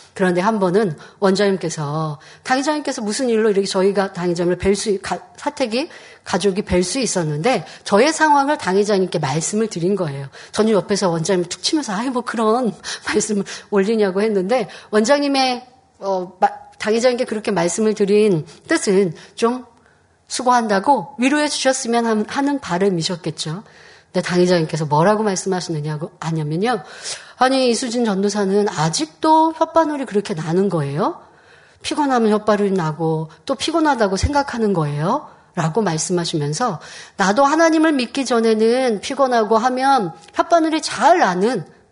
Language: Korean